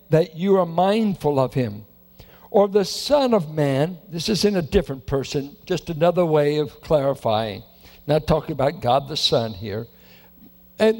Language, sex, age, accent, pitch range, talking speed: English, male, 60-79, American, 150-215 Hz, 165 wpm